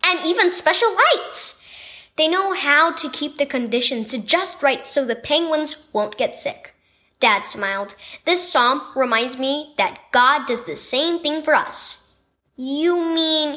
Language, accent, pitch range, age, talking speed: English, American, 230-315 Hz, 10-29, 155 wpm